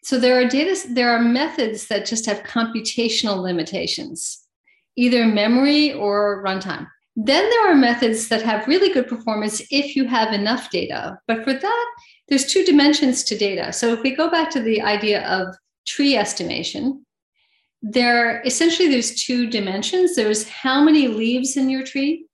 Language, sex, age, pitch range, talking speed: English, female, 50-69, 220-280 Hz, 165 wpm